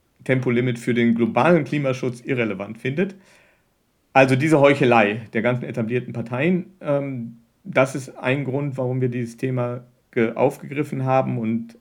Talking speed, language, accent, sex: 125 wpm, German, German, male